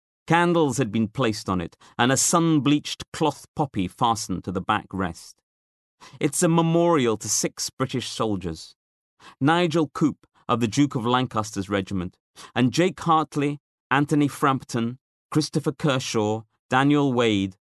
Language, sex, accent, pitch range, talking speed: English, male, British, 100-140 Hz, 135 wpm